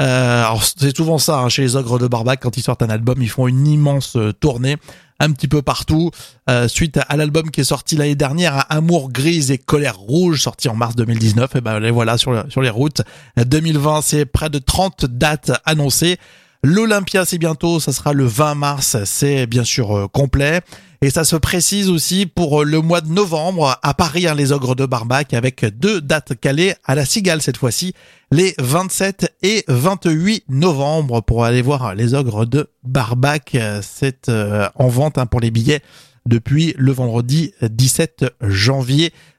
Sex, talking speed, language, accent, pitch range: male, 190 wpm, French, French, 130-165 Hz